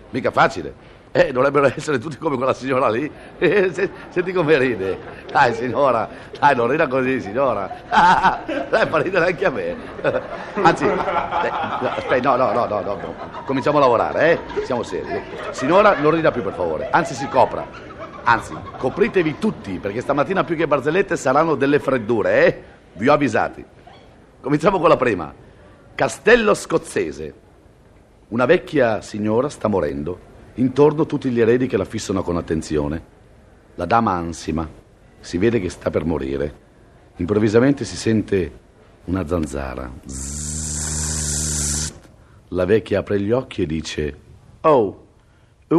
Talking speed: 145 wpm